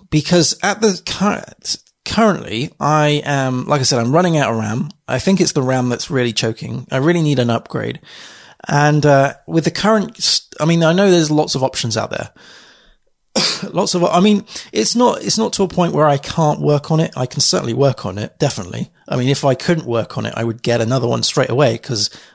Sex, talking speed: male, 225 wpm